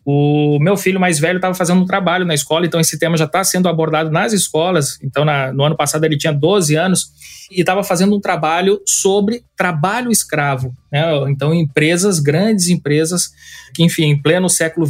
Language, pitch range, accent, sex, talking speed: Portuguese, 150-185 Hz, Brazilian, male, 185 wpm